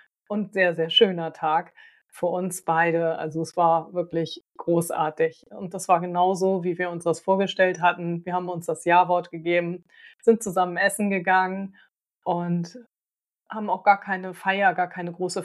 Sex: female